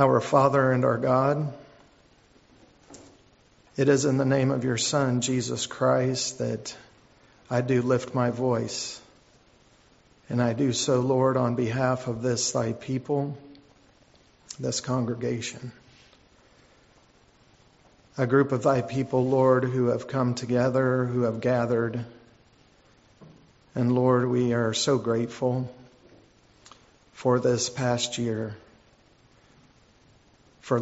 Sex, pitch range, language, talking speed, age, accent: male, 120-130 Hz, English, 115 wpm, 50-69, American